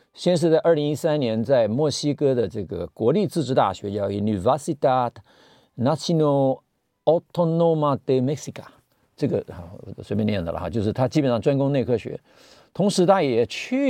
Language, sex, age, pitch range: Chinese, male, 50-69, 115-165 Hz